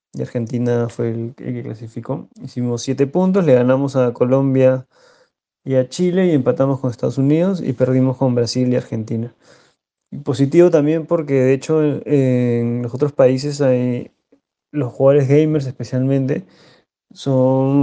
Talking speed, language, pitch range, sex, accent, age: 145 wpm, Spanish, 125-145 Hz, male, Argentinian, 20-39